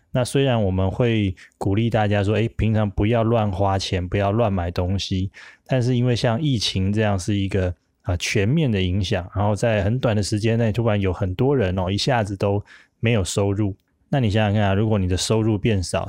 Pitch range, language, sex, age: 95-115 Hz, Chinese, male, 20-39